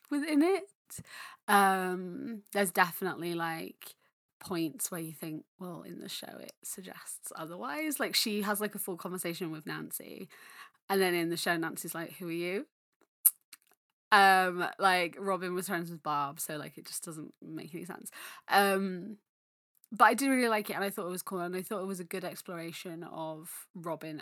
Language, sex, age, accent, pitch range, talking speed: English, female, 20-39, British, 155-190 Hz, 185 wpm